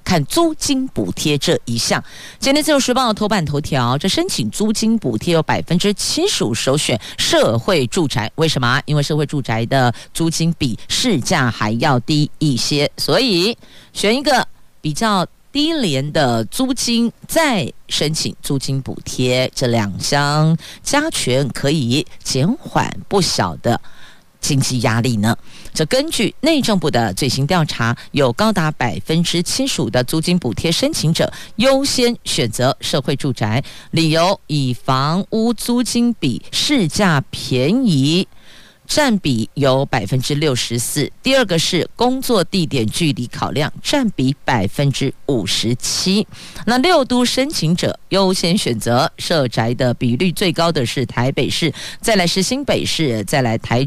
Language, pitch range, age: Chinese, 130-220 Hz, 50-69